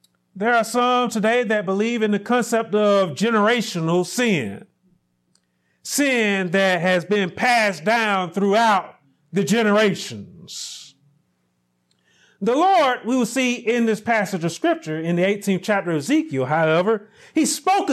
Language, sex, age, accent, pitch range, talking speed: English, male, 40-59, American, 190-305 Hz, 135 wpm